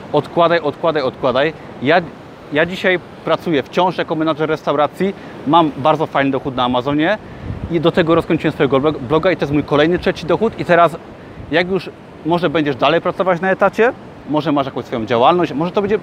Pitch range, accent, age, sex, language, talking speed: 140-170 Hz, native, 30-49, male, Polish, 180 wpm